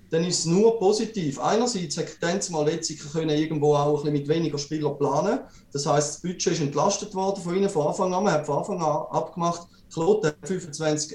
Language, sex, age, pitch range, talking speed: German, male, 30-49, 150-195 Hz, 190 wpm